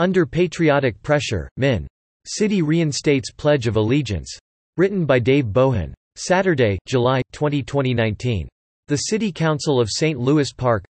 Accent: American